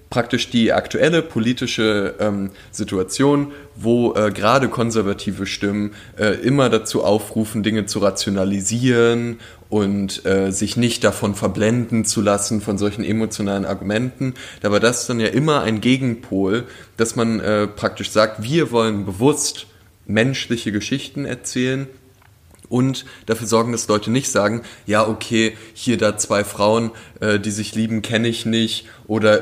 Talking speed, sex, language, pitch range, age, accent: 145 wpm, male, German, 105-125 Hz, 20-39, German